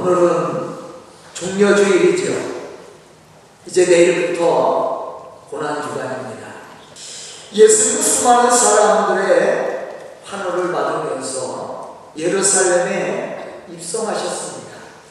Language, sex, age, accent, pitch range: Korean, male, 40-59, native, 215-340 Hz